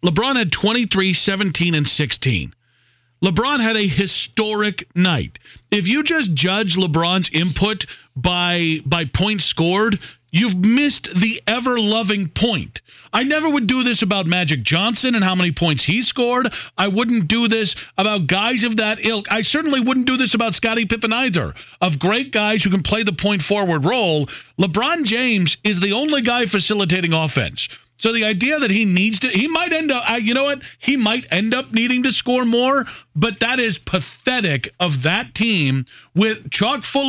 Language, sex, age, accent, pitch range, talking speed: English, male, 40-59, American, 175-235 Hz, 175 wpm